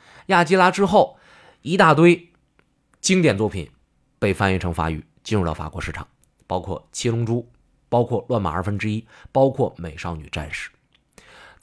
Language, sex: Chinese, male